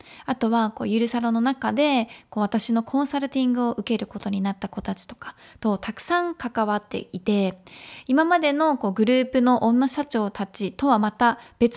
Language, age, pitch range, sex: Japanese, 20-39, 210-280 Hz, female